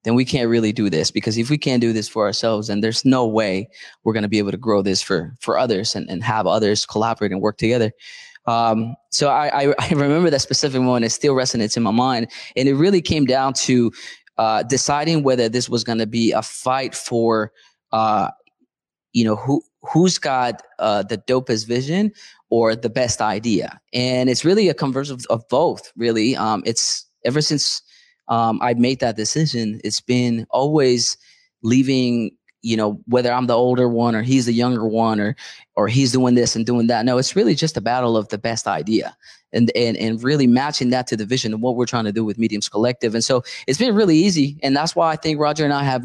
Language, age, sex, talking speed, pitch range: English, 20-39, male, 215 wpm, 115-135 Hz